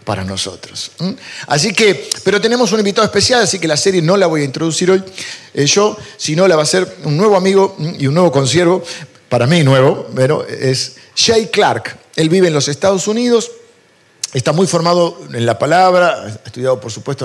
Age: 50-69